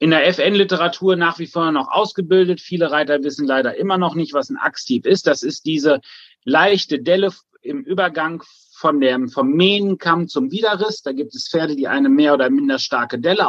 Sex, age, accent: male, 30-49, German